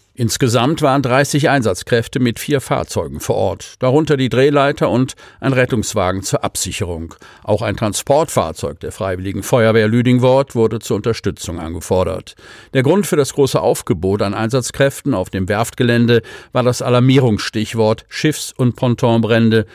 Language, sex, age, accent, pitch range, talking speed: German, male, 50-69, German, 105-135 Hz, 135 wpm